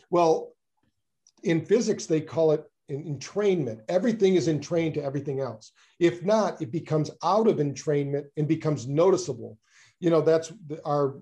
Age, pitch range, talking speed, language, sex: 50-69, 140-170 Hz, 155 wpm, English, male